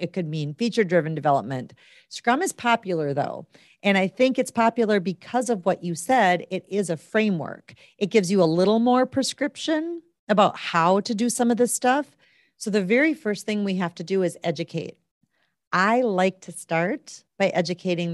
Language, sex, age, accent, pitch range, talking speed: English, female, 40-59, American, 170-225 Hz, 180 wpm